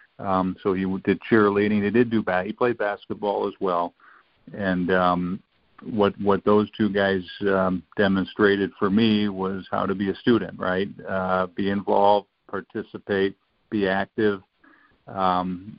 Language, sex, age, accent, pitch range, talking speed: English, male, 50-69, American, 95-105 Hz, 145 wpm